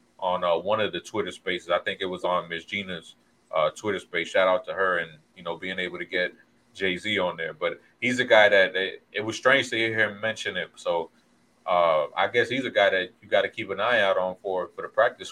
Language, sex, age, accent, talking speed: English, male, 30-49, American, 250 wpm